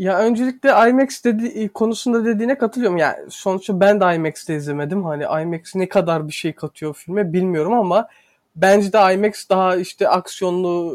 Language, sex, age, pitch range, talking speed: Turkish, male, 30-49, 175-220 Hz, 165 wpm